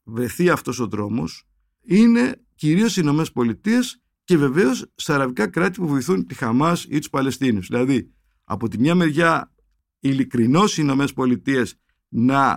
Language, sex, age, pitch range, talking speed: Greek, male, 50-69, 115-165 Hz, 150 wpm